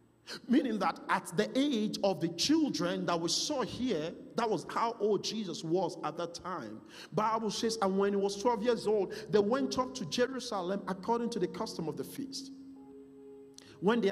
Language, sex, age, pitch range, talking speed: English, male, 50-69, 165-245 Hz, 185 wpm